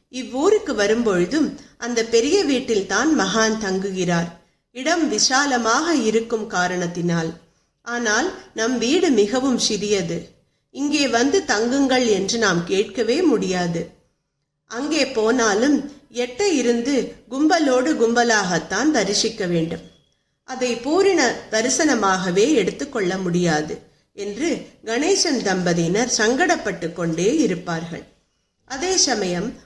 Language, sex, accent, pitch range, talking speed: Tamil, female, native, 190-265 Hz, 65 wpm